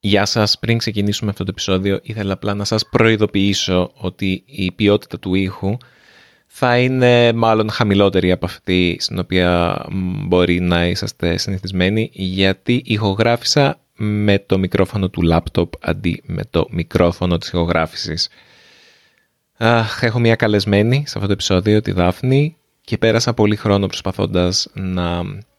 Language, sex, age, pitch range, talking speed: Greek, male, 20-39, 90-110 Hz, 135 wpm